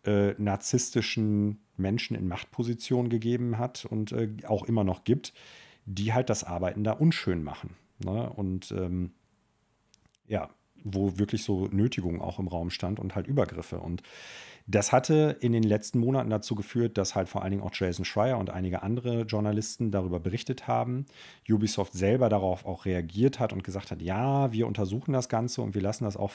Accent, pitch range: German, 100-115 Hz